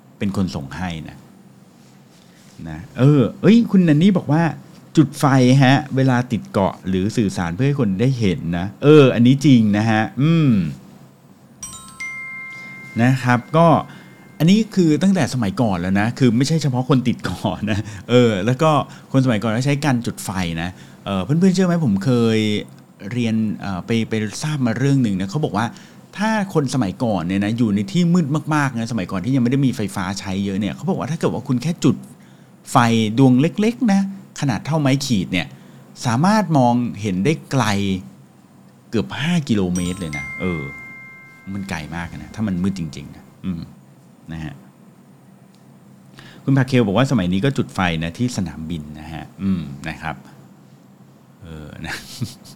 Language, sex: English, male